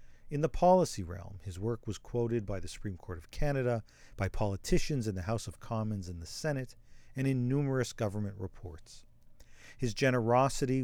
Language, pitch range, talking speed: English, 105-135 Hz, 170 wpm